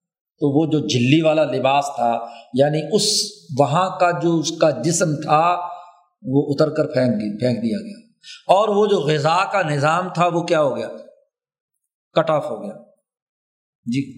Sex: male